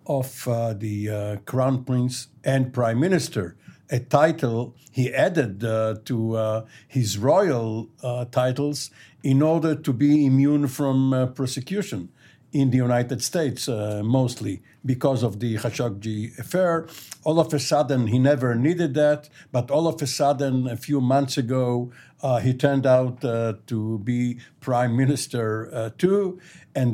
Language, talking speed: English, 150 wpm